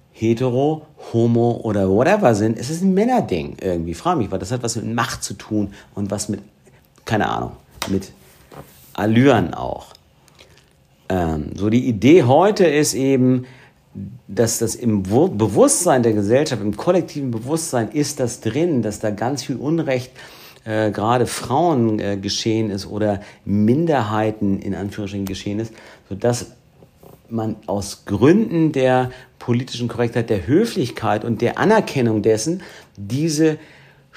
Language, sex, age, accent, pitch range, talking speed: German, male, 50-69, German, 105-130 Hz, 135 wpm